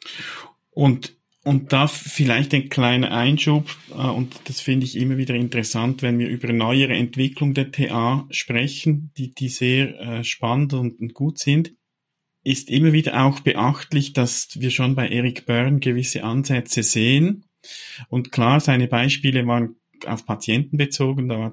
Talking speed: 155 wpm